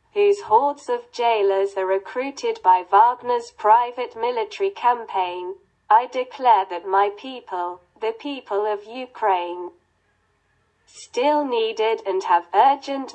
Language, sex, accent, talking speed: Russian, female, British, 115 wpm